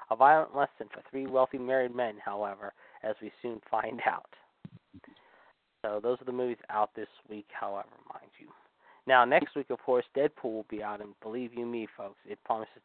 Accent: American